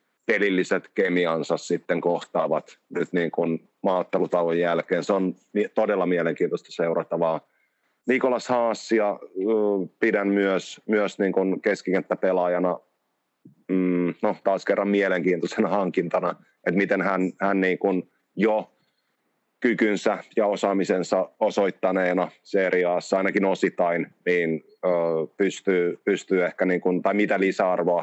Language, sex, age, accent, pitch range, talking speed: Finnish, male, 30-49, native, 85-100 Hz, 105 wpm